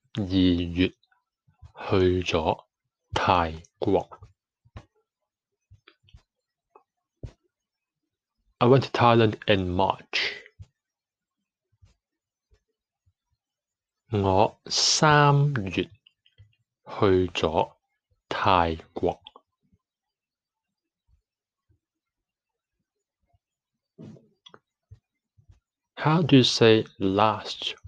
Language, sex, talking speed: English, male, 35 wpm